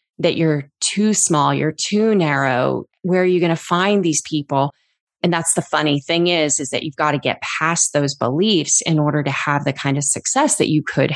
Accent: American